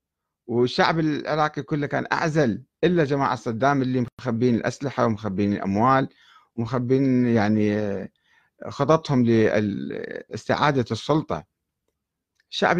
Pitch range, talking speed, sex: 110-150 Hz, 90 wpm, male